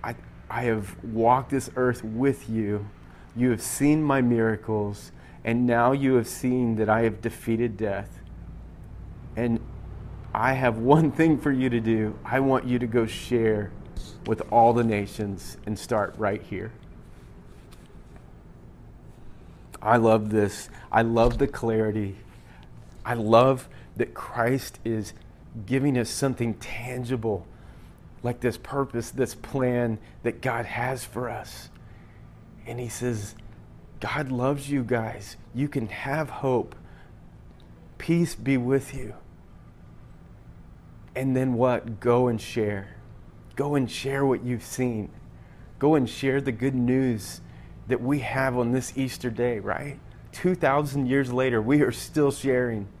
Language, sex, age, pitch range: English, male, 30-49, 110-130 Hz